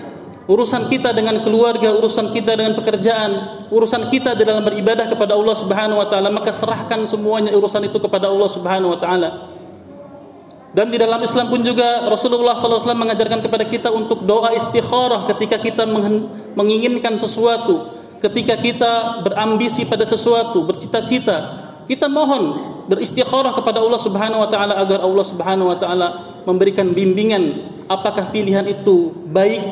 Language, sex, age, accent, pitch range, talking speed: Indonesian, male, 30-49, native, 195-225 Hz, 140 wpm